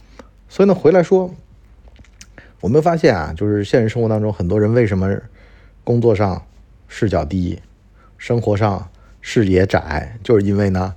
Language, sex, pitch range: Chinese, male, 95-110 Hz